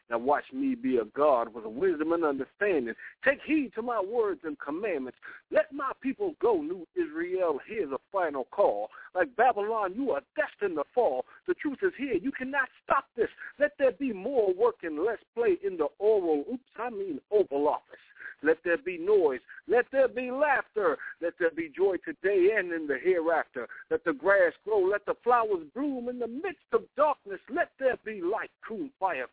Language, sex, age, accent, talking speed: English, male, 60-79, American, 190 wpm